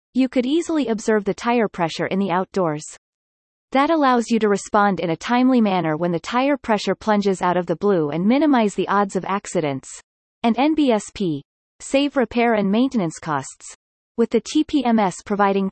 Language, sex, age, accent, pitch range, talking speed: English, female, 30-49, American, 180-250 Hz, 170 wpm